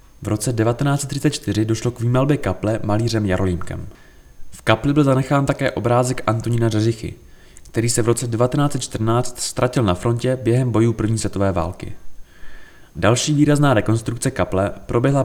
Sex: male